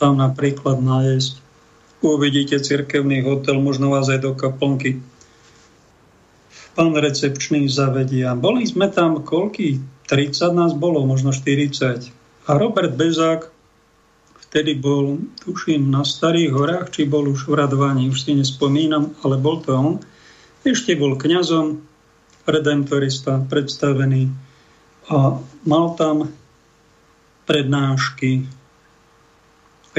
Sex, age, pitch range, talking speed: male, 50-69, 135-160 Hz, 110 wpm